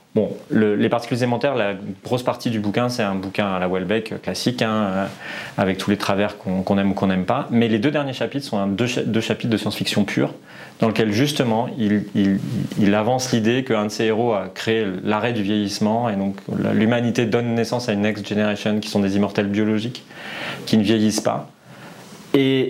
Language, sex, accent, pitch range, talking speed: French, male, French, 105-120 Hz, 205 wpm